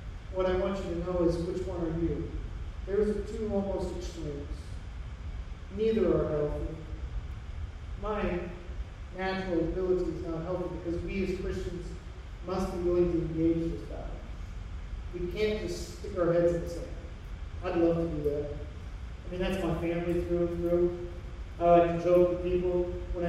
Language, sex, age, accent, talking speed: English, male, 40-59, American, 165 wpm